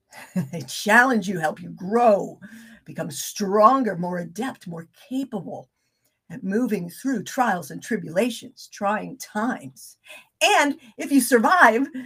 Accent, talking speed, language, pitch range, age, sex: American, 120 wpm, English, 195-270 Hz, 50-69, female